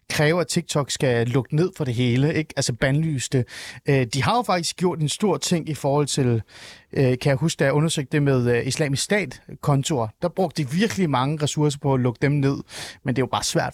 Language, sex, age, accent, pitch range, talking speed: Danish, male, 30-49, native, 135-175 Hz, 215 wpm